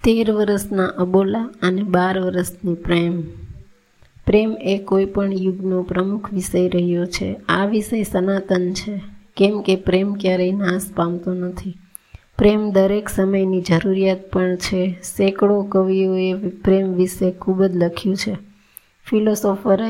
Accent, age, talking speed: native, 20-39, 110 wpm